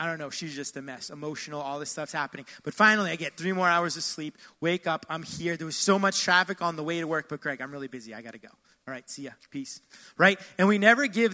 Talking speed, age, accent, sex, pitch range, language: 280 wpm, 20-39, American, male, 160-195 Hz, English